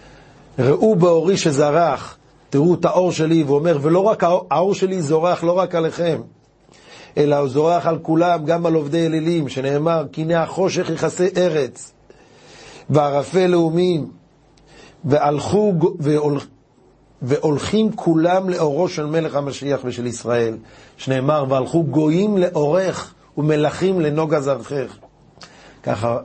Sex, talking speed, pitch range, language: male, 120 wpm, 130-165 Hz, Hebrew